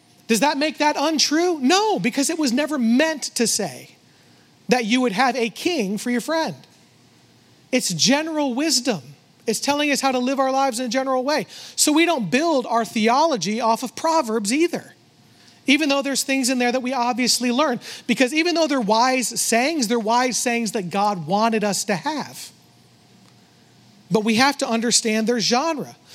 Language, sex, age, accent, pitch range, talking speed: English, male, 40-59, American, 230-290 Hz, 180 wpm